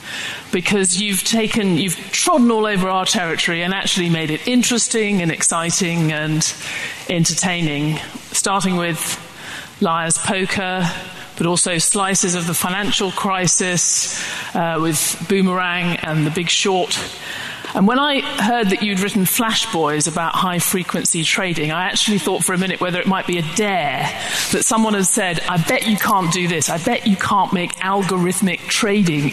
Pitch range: 165-200 Hz